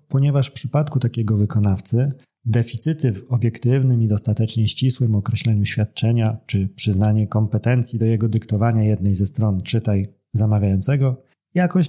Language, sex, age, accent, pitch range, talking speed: Polish, male, 30-49, native, 105-130 Hz, 125 wpm